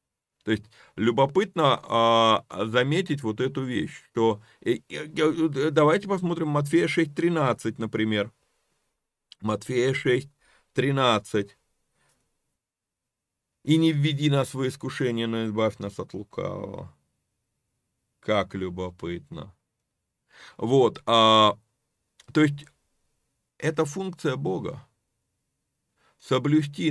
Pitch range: 115-155 Hz